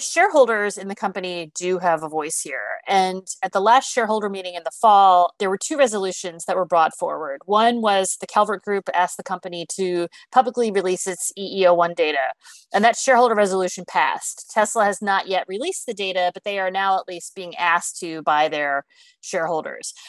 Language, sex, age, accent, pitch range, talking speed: English, female, 30-49, American, 180-225 Hz, 190 wpm